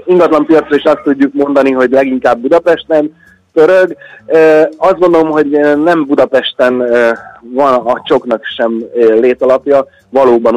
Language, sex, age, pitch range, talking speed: Hungarian, male, 30-49, 115-150 Hz, 130 wpm